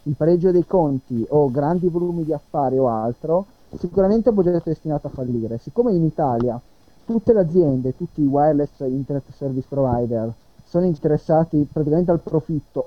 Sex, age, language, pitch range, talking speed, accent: male, 30-49, Italian, 135-170 Hz, 165 wpm, native